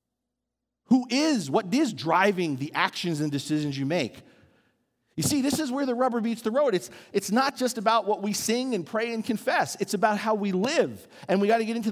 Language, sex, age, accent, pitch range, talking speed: English, male, 40-59, American, 180-270 Hz, 220 wpm